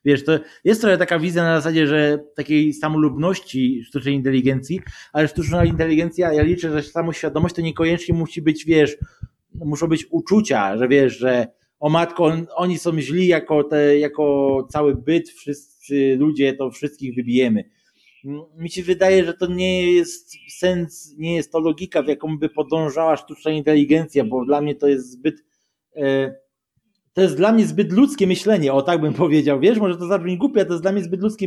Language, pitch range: Polish, 145-175 Hz